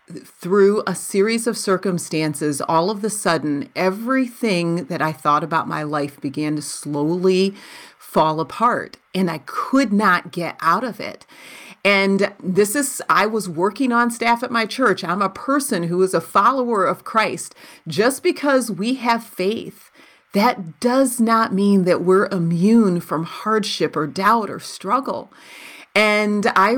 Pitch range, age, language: 175-235 Hz, 40-59, English